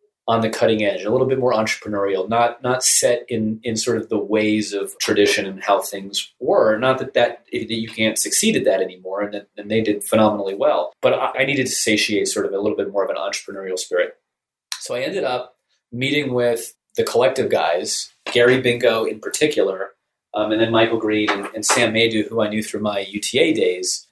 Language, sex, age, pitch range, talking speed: English, male, 30-49, 110-165 Hz, 210 wpm